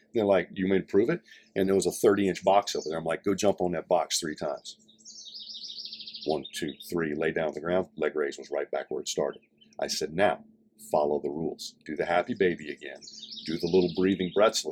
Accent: American